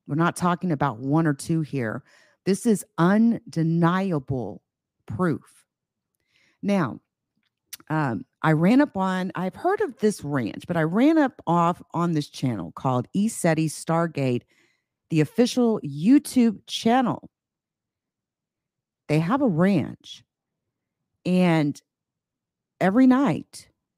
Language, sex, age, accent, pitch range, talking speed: English, female, 50-69, American, 140-195 Hz, 115 wpm